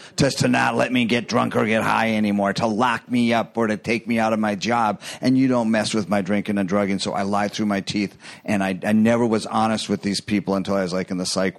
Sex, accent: male, American